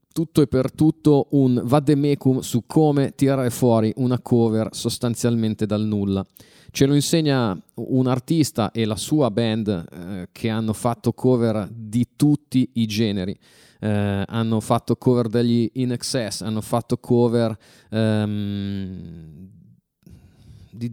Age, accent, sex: 30-49, native, male